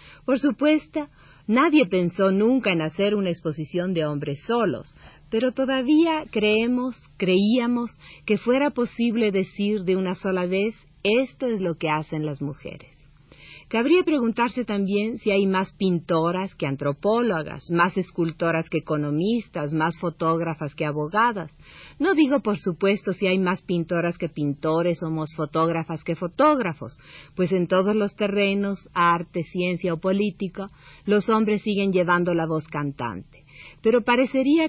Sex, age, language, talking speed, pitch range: female, 40-59, Spanish, 140 wpm, 155-215 Hz